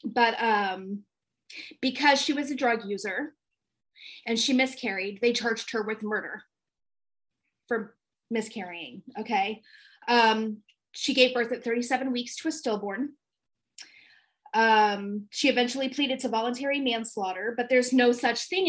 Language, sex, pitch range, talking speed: English, female, 225-280 Hz, 130 wpm